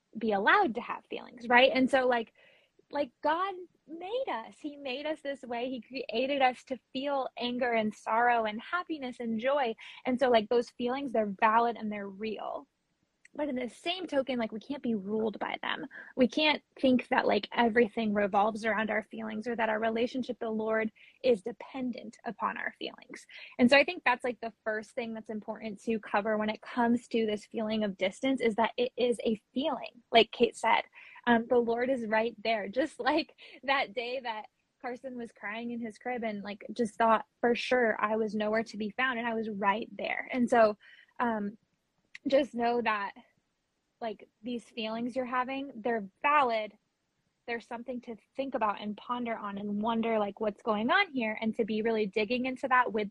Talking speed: 195 wpm